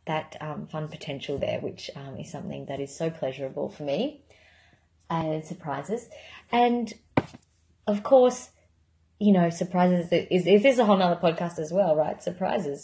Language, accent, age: English, Australian, 30-49